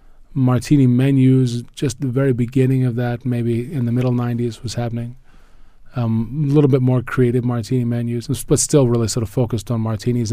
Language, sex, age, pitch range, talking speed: English, male, 20-39, 110-125 Hz, 175 wpm